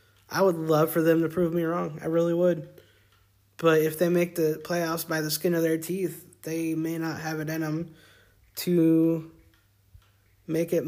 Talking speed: 190 wpm